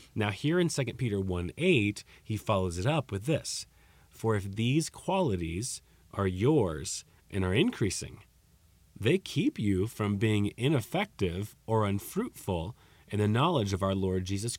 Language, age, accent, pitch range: English, 30-49, American, 90-130 Hz